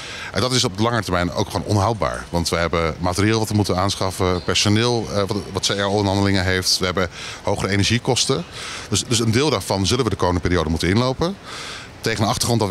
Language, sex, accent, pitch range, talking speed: Dutch, male, Dutch, 90-115 Hz, 195 wpm